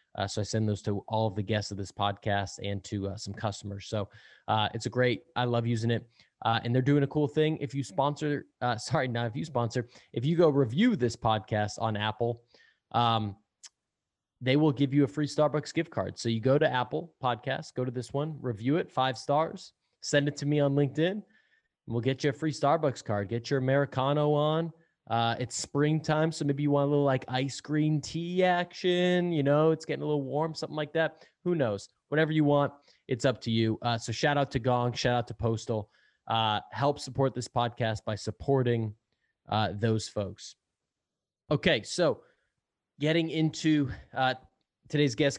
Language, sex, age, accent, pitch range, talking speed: English, male, 20-39, American, 115-150 Hz, 200 wpm